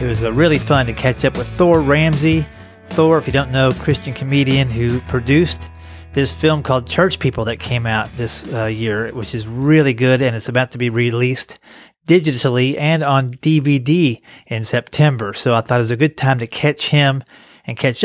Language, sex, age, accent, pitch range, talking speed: English, male, 40-59, American, 115-140 Hz, 195 wpm